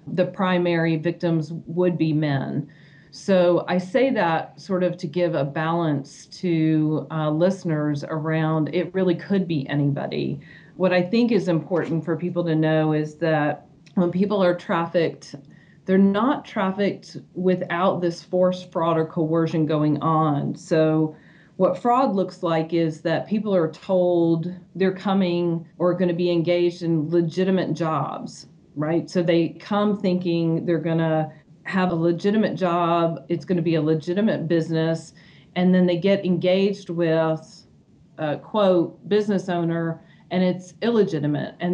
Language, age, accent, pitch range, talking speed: English, 40-59, American, 160-185 Hz, 150 wpm